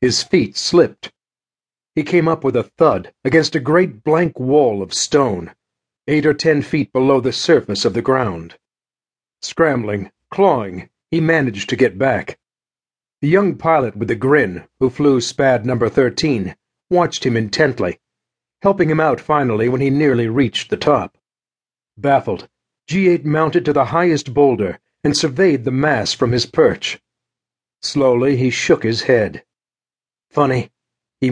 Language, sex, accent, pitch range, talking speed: English, male, American, 125-160 Hz, 150 wpm